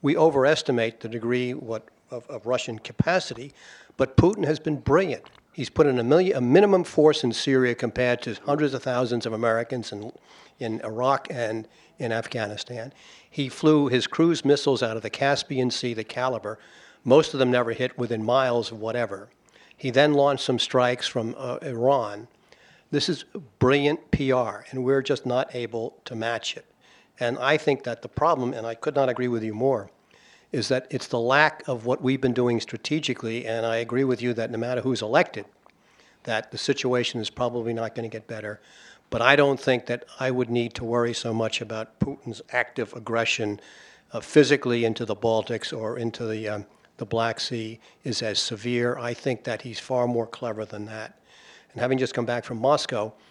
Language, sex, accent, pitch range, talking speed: English, male, American, 115-135 Hz, 190 wpm